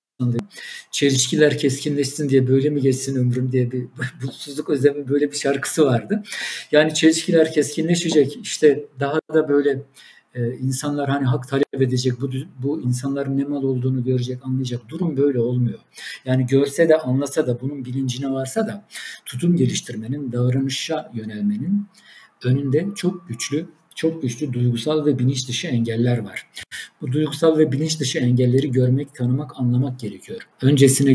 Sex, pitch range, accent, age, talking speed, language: male, 125-150 Hz, native, 50-69, 140 wpm, Turkish